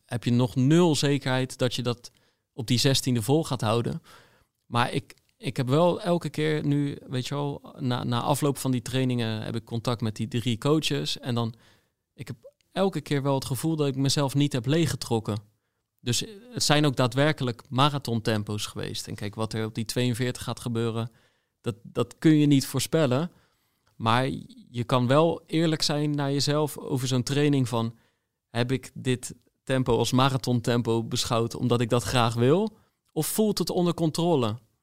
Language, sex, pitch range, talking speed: Dutch, male, 120-145 Hz, 185 wpm